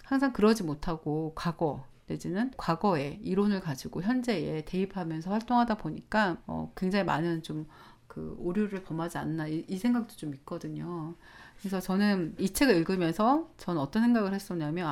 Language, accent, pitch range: Korean, native, 155-225 Hz